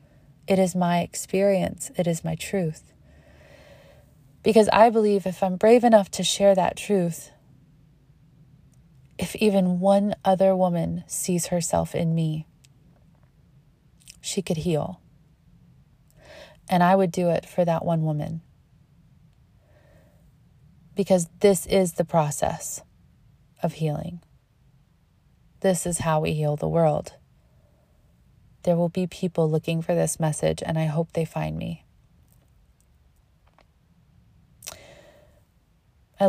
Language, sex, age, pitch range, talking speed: English, female, 30-49, 150-185 Hz, 115 wpm